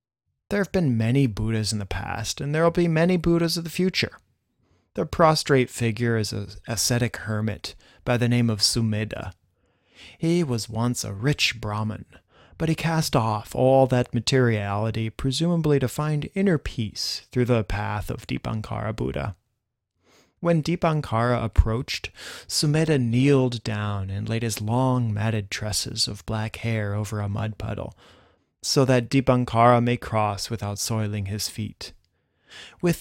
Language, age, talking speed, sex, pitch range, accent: English, 30-49, 150 wpm, male, 105-135 Hz, American